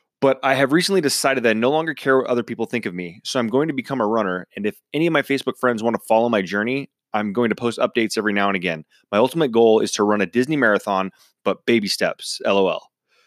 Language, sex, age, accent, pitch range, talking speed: English, male, 20-39, American, 105-130 Hz, 260 wpm